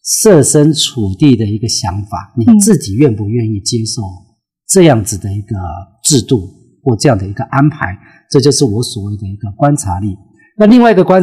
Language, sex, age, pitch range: Chinese, male, 40-59, 110-160 Hz